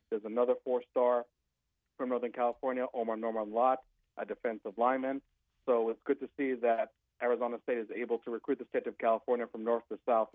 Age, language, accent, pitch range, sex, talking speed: 40-59, English, American, 110-120 Hz, male, 185 wpm